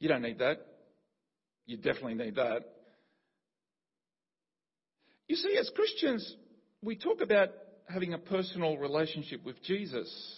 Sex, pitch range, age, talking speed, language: male, 155-225 Hz, 50-69, 120 wpm, English